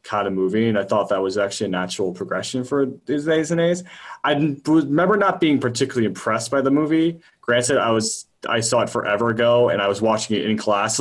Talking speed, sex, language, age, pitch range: 230 wpm, male, English, 20-39, 100-125 Hz